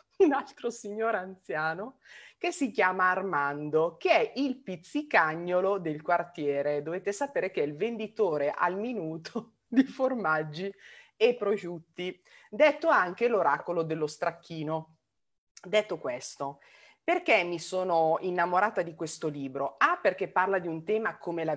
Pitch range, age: 155-205 Hz, 30-49